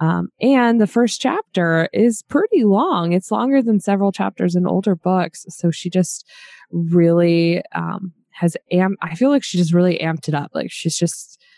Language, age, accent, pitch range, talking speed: English, 20-39, American, 165-200 Hz, 180 wpm